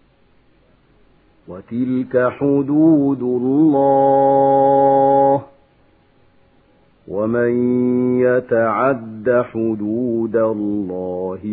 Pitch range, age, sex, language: 110-135 Hz, 50-69, male, Arabic